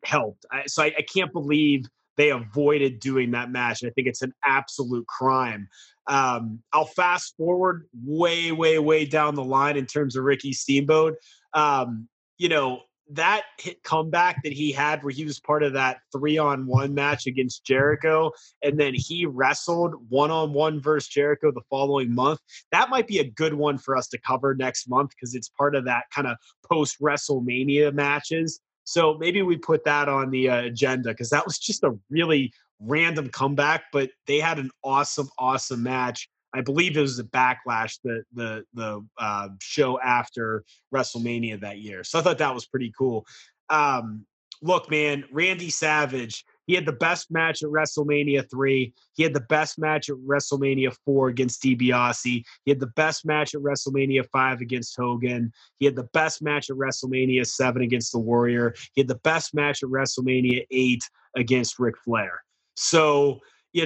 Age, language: 20-39, English